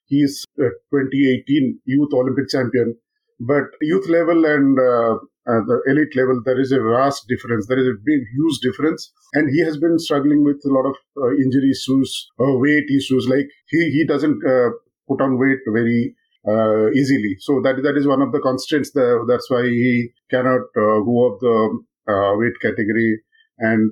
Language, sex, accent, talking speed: English, male, Indian, 185 wpm